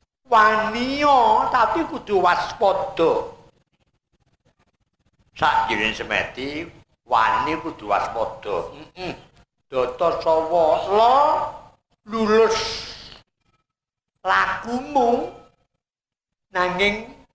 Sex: male